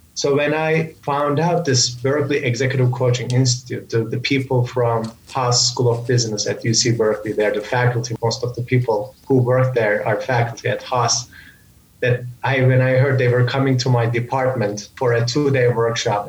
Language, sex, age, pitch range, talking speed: English, male, 30-49, 115-135 Hz, 185 wpm